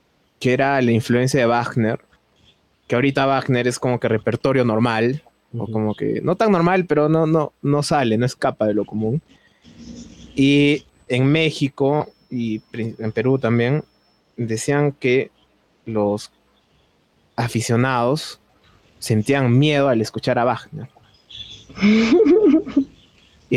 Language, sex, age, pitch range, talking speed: Spanish, male, 20-39, 110-140 Hz, 120 wpm